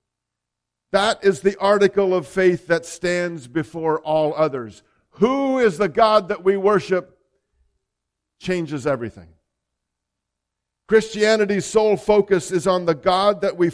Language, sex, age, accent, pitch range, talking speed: English, male, 50-69, American, 130-195 Hz, 125 wpm